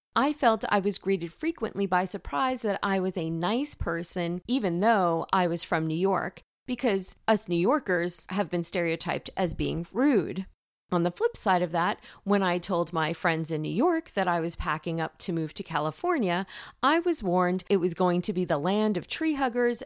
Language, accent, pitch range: English, American, 175-230 Hz